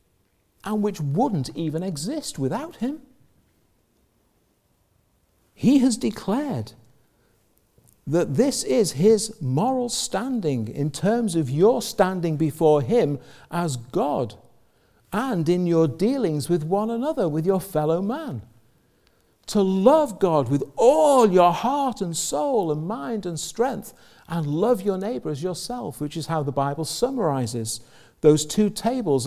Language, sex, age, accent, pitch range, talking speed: English, male, 50-69, British, 125-200 Hz, 130 wpm